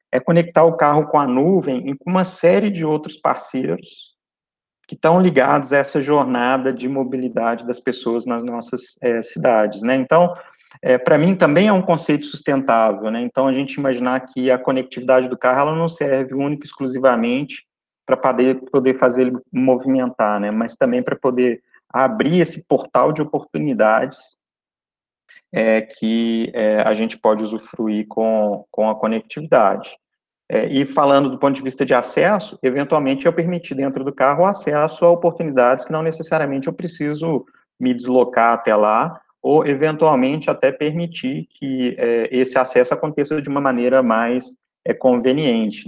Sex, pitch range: male, 125-150 Hz